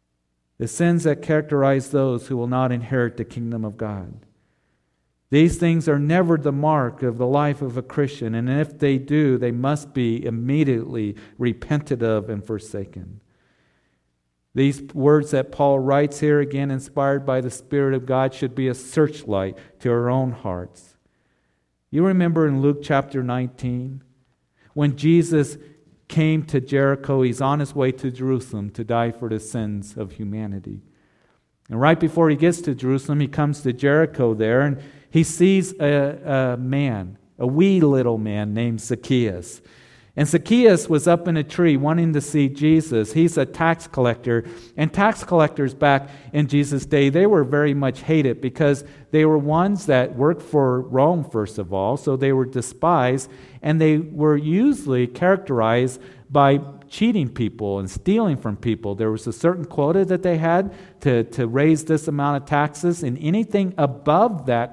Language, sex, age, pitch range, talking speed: English, male, 50-69, 120-150 Hz, 165 wpm